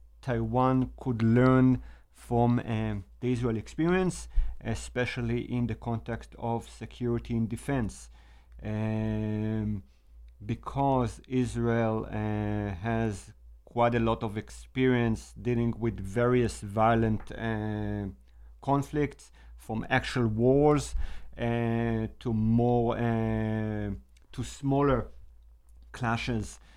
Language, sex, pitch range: Chinese, male, 100-120 Hz